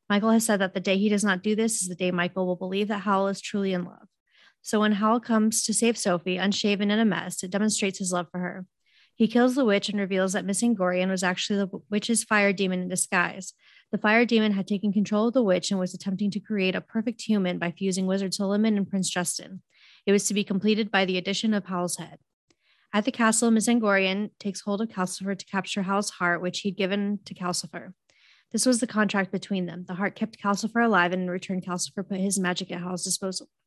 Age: 20-39